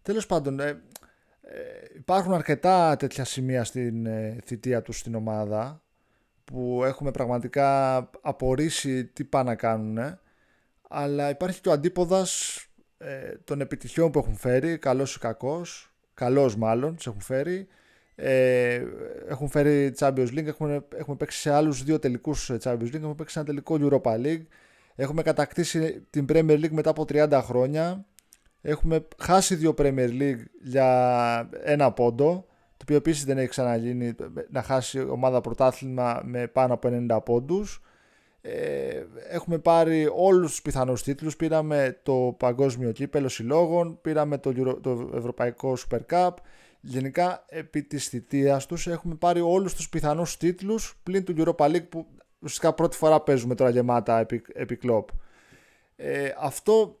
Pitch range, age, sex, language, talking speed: 125-165 Hz, 20-39, male, Greek, 145 wpm